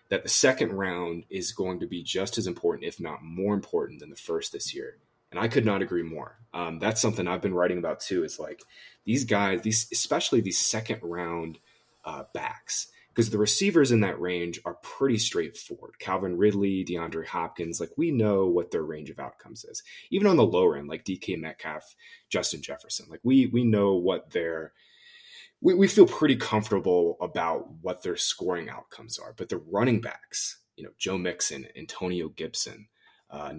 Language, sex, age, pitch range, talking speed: English, male, 20-39, 85-120 Hz, 190 wpm